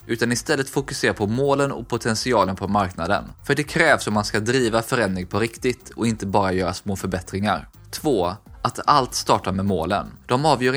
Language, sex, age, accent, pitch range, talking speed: Swedish, male, 20-39, native, 100-130 Hz, 185 wpm